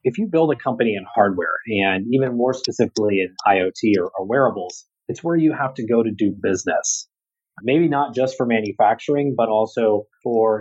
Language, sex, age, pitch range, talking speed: English, male, 30-49, 110-145 Hz, 180 wpm